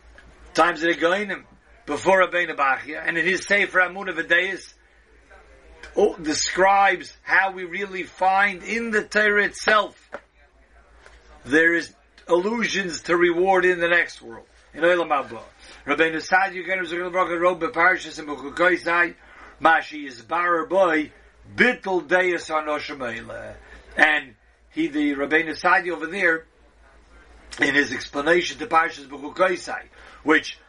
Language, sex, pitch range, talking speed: English, male, 155-180 Hz, 130 wpm